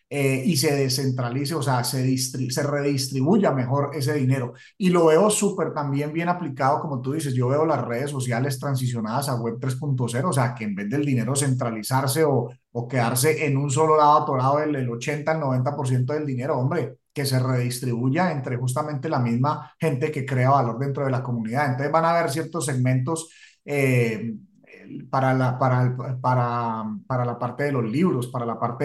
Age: 30-49